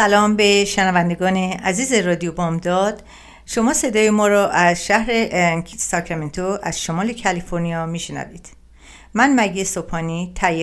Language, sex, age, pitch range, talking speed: Persian, female, 50-69, 160-200 Hz, 120 wpm